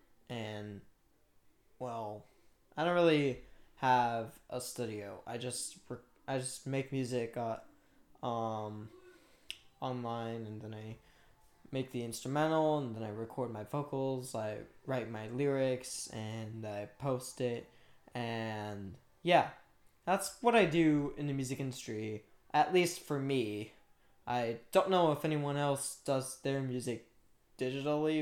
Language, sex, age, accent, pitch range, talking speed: English, male, 10-29, American, 115-150 Hz, 130 wpm